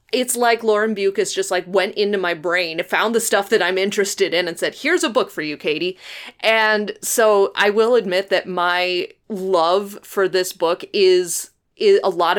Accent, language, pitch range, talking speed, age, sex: American, English, 175-220 Hz, 195 wpm, 30-49, female